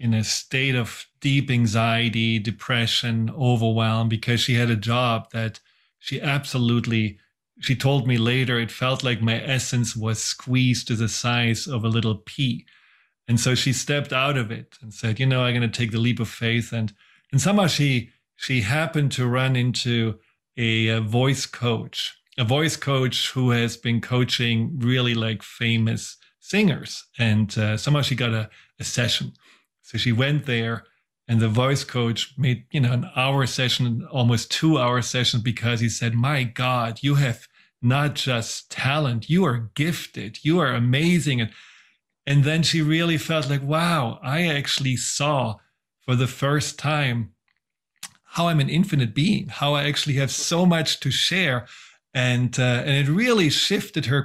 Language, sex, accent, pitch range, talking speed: English, male, German, 115-145 Hz, 170 wpm